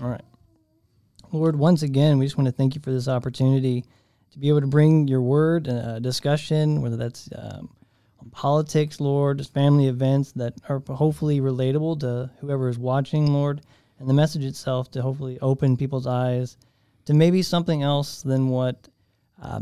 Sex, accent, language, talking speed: male, American, English, 175 wpm